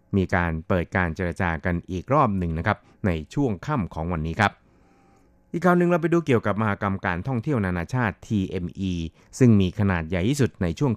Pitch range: 90-115 Hz